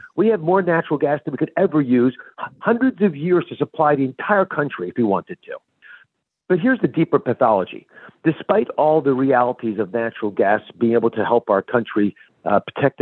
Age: 50-69